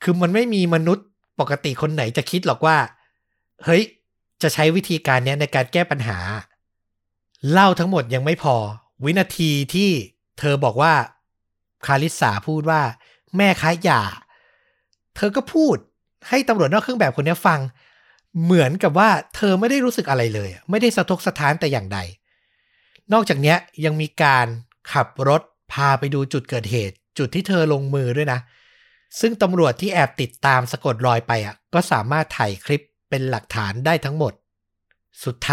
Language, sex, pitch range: Thai, male, 120-170 Hz